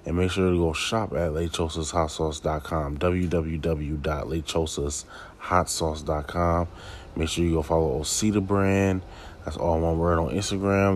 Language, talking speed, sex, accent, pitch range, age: English, 130 wpm, male, American, 80-95 Hz, 20-39